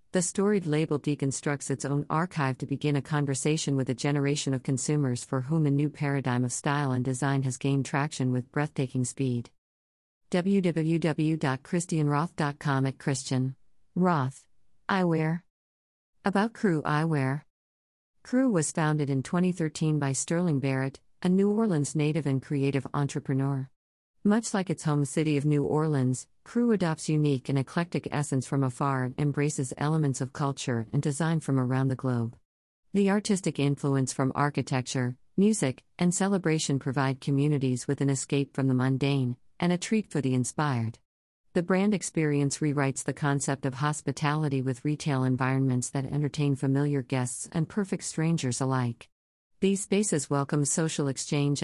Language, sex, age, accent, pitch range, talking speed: English, female, 50-69, American, 130-155 Hz, 150 wpm